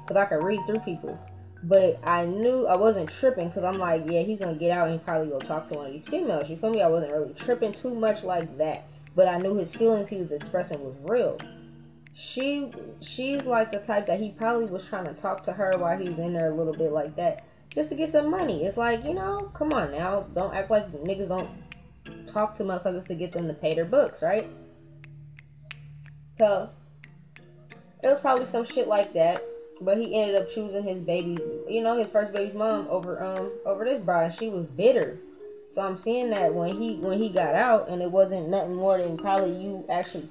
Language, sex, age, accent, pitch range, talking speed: English, female, 10-29, American, 165-225 Hz, 225 wpm